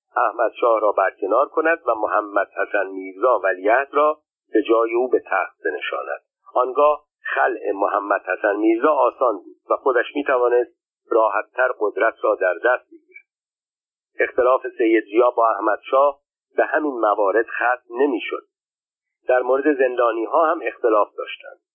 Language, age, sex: Persian, 50-69, male